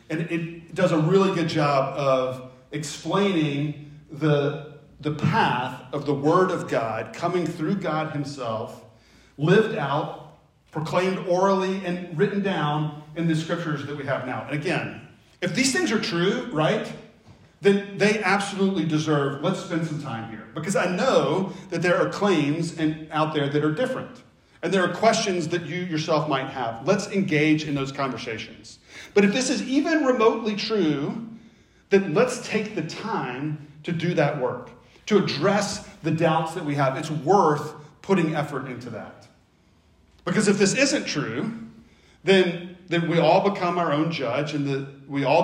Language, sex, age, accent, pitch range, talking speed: English, male, 40-59, American, 145-185 Hz, 165 wpm